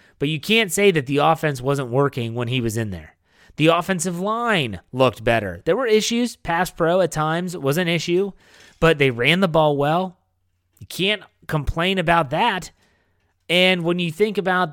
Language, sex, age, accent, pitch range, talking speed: English, male, 30-49, American, 120-160 Hz, 185 wpm